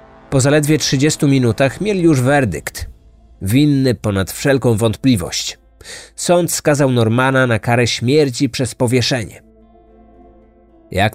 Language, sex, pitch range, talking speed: Polish, male, 110-155 Hz, 110 wpm